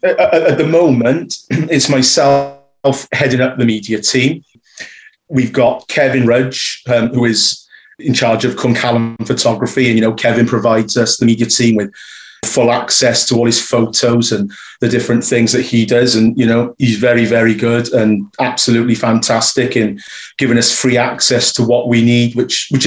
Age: 30-49